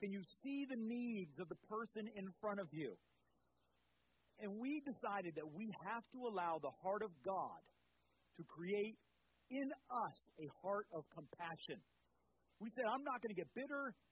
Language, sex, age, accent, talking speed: English, male, 40-59, American, 170 wpm